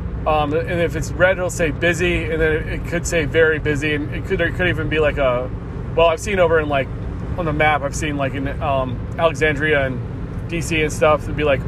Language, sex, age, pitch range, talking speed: English, male, 30-49, 135-175 Hz, 235 wpm